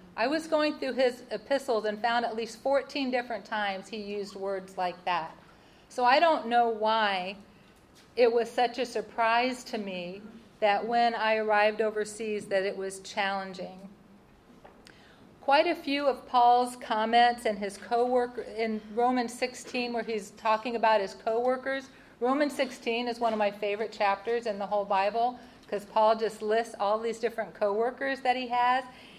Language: English